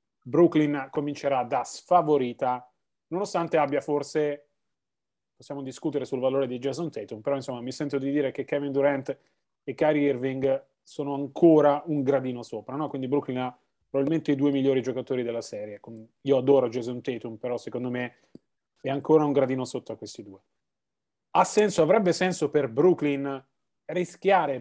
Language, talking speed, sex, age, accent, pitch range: Italian, 155 wpm, male, 30-49, native, 135-170 Hz